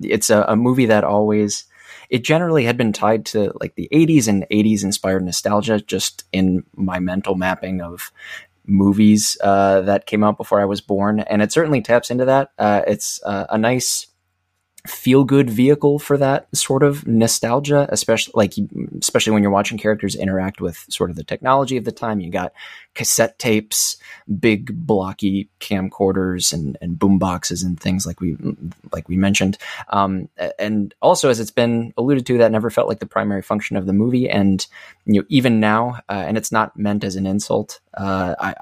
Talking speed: 185 wpm